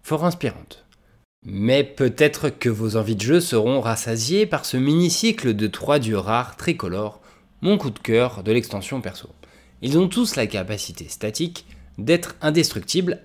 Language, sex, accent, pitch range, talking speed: French, male, French, 105-155 Hz, 150 wpm